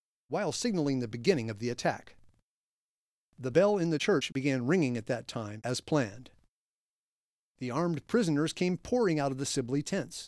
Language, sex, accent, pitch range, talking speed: English, male, American, 125-160 Hz, 170 wpm